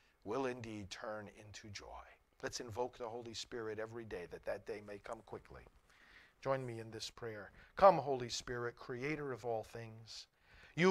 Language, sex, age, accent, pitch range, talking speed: English, male, 50-69, American, 125-180 Hz, 170 wpm